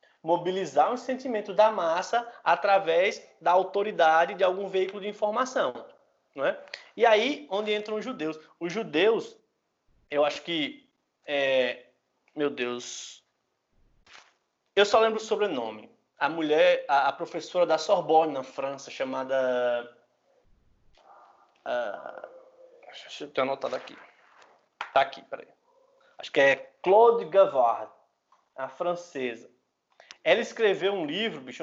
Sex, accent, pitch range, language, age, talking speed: male, Brazilian, 160-230 Hz, Portuguese, 20-39, 120 wpm